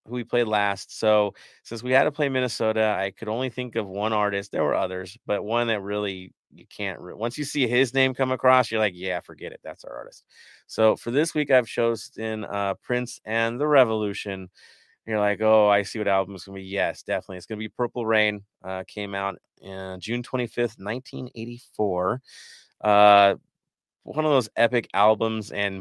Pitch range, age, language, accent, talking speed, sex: 100-120 Hz, 30-49, English, American, 200 wpm, male